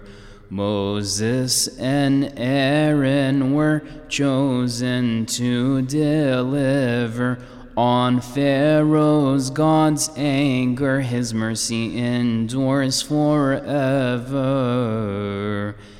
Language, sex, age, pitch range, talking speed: English, male, 20-39, 120-140 Hz, 55 wpm